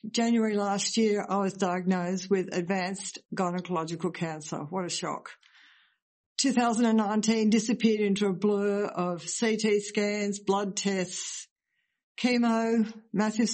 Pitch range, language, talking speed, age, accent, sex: 190-225 Hz, English, 110 wpm, 60-79, Australian, female